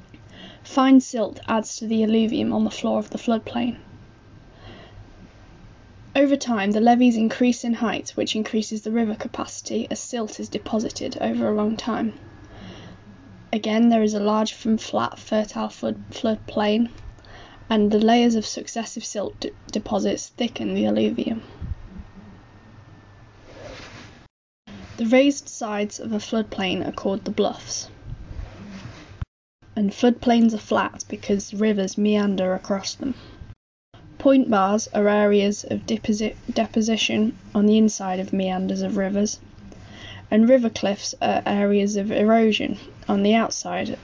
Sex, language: female, English